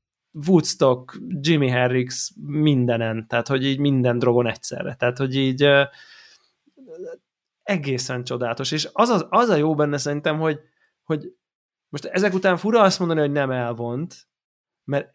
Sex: male